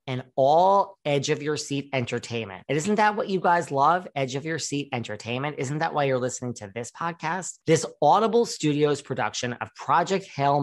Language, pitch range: English, 120-165 Hz